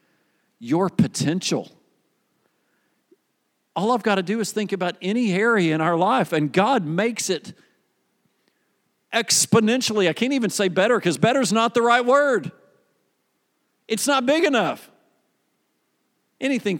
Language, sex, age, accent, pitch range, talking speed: English, male, 50-69, American, 165-235 Hz, 130 wpm